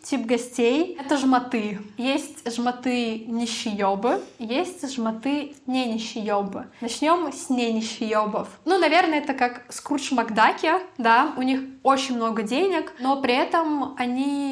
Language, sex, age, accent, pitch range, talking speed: Russian, female, 20-39, native, 230-275 Hz, 130 wpm